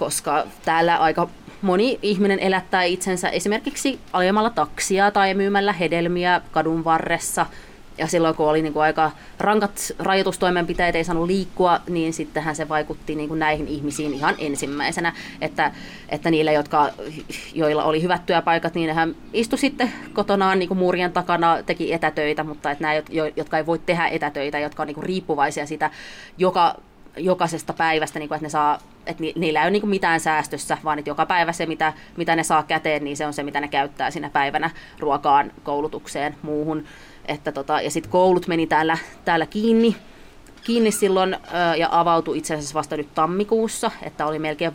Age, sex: 20-39, female